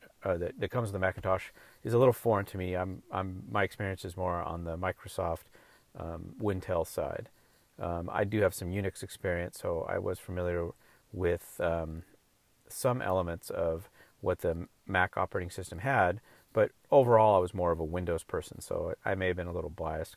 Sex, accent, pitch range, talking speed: male, American, 90-105 Hz, 190 wpm